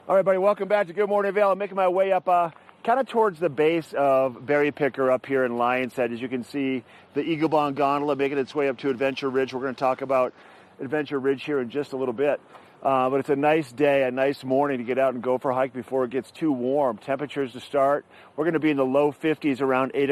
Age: 40-59